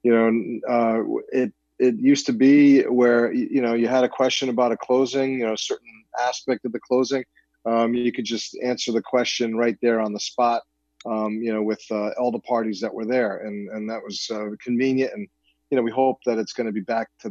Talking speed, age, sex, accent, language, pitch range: 230 wpm, 40-59, male, American, English, 105-125 Hz